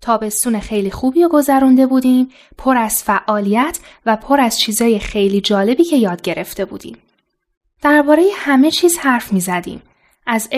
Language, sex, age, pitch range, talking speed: Persian, female, 10-29, 200-270 Hz, 145 wpm